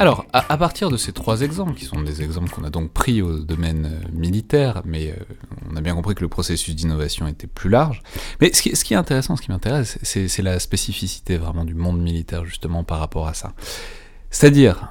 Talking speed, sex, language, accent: 225 wpm, male, French, French